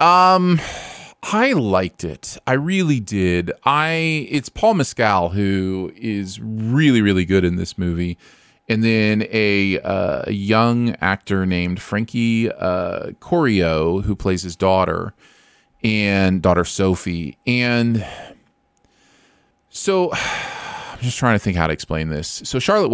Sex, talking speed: male, 130 wpm